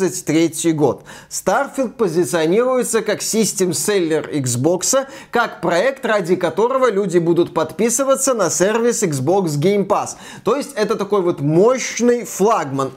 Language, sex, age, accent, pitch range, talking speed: Russian, male, 20-39, native, 170-230 Hz, 115 wpm